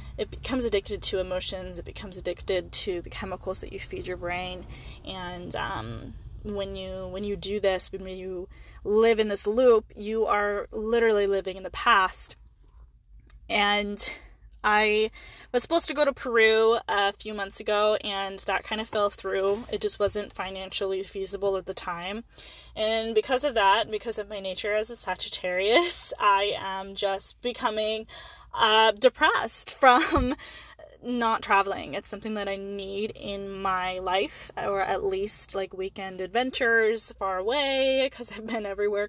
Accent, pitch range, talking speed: American, 195-220 Hz, 160 wpm